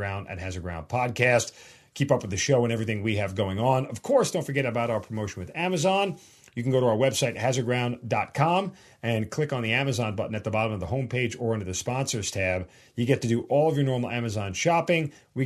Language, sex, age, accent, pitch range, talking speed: English, male, 40-59, American, 110-135 Hz, 230 wpm